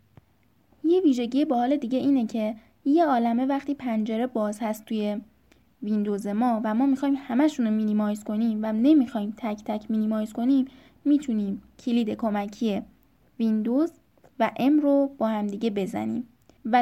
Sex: female